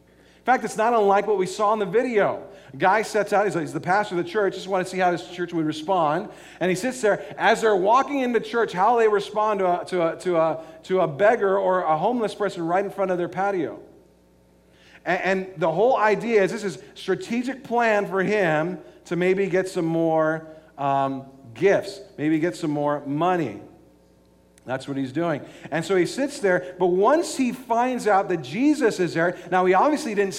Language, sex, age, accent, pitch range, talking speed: English, male, 40-59, American, 175-220 Hz, 210 wpm